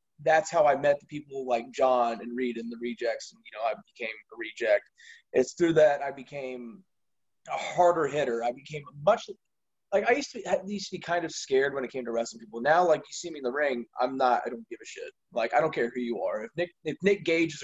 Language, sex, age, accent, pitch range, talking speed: English, male, 20-39, American, 120-170 Hz, 270 wpm